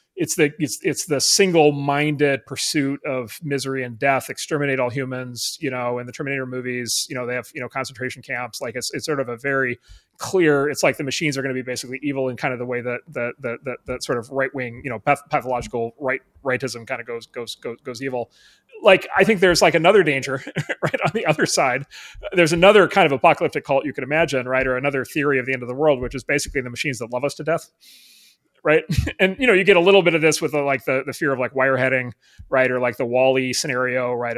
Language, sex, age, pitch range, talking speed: English, male, 30-49, 120-150 Hz, 240 wpm